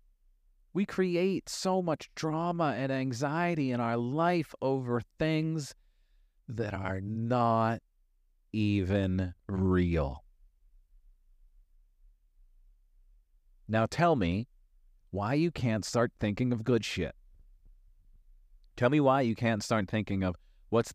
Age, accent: 40-59, American